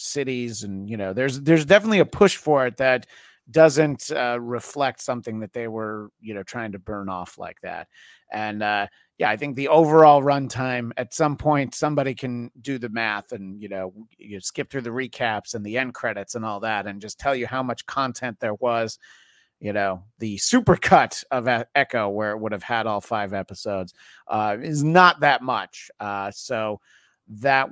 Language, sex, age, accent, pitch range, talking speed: English, male, 40-59, American, 105-135 Hz, 195 wpm